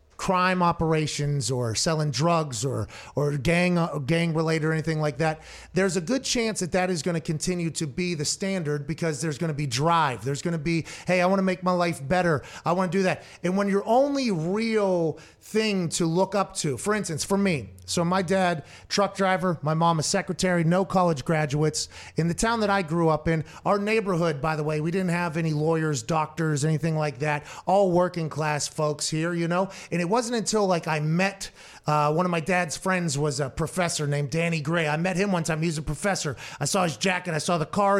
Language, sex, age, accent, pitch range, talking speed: English, male, 30-49, American, 155-185 Hz, 225 wpm